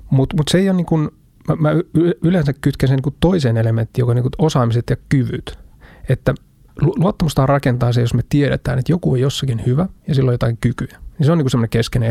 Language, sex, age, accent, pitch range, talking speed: Finnish, male, 30-49, native, 120-145 Hz, 220 wpm